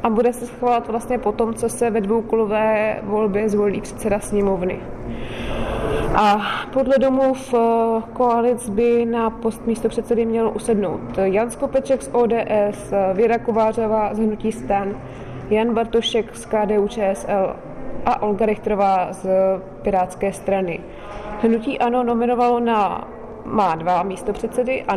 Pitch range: 205-235 Hz